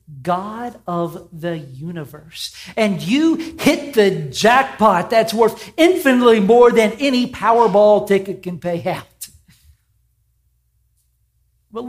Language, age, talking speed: English, 50-69, 105 wpm